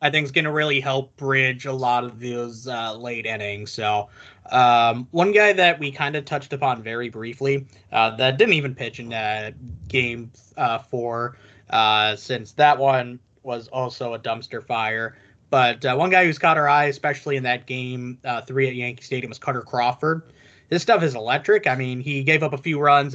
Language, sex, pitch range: English, male, 125-145 Hz